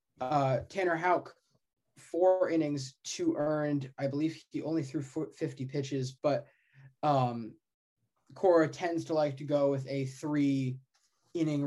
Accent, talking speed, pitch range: American, 130 wpm, 135-160 Hz